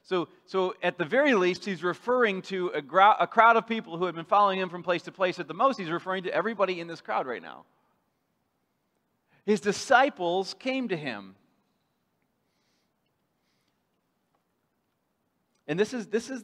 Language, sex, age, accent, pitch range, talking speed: English, male, 40-59, American, 175-230 Hz, 160 wpm